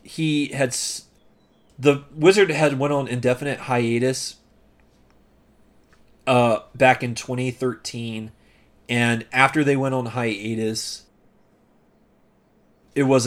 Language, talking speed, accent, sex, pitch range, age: English, 95 wpm, American, male, 110-130 Hz, 30-49